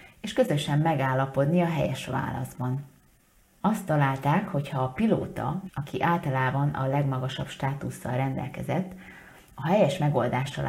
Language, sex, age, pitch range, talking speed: Hungarian, female, 30-49, 130-170 Hz, 110 wpm